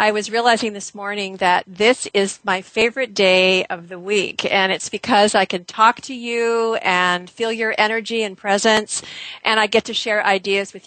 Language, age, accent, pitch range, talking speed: English, 50-69, American, 195-230 Hz, 195 wpm